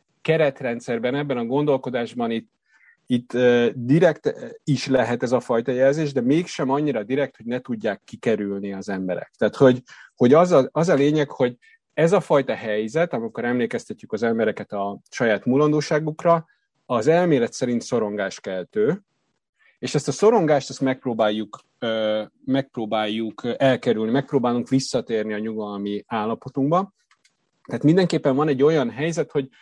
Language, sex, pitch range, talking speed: Hungarian, male, 110-150 Hz, 140 wpm